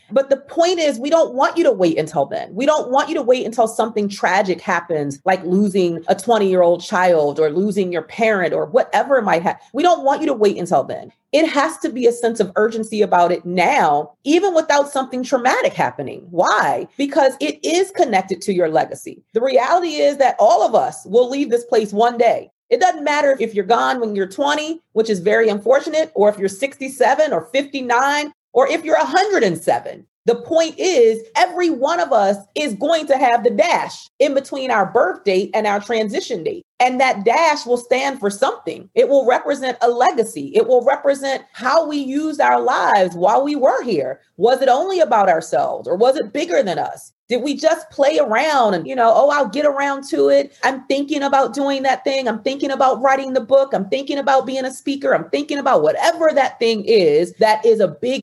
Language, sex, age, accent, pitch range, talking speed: English, female, 40-59, American, 215-300 Hz, 210 wpm